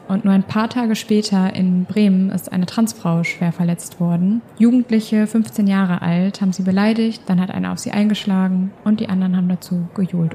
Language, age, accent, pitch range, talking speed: German, 20-39, German, 180-210 Hz, 190 wpm